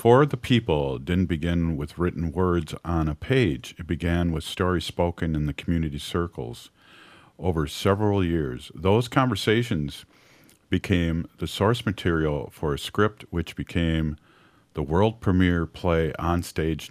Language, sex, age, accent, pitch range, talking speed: English, male, 50-69, American, 80-100 Hz, 140 wpm